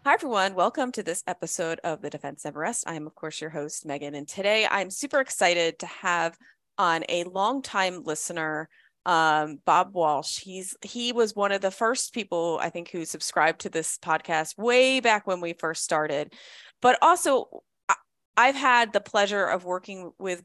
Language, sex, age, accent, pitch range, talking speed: English, female, 30-49, American, 160-200 Hz, 180 wpm